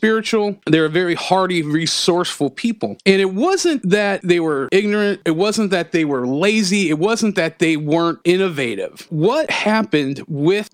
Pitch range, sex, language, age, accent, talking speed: 150-190 Hz, male, English, 40-59, American, 160 wpm